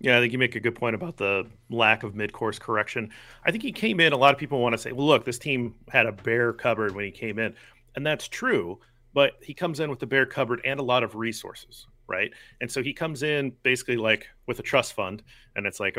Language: English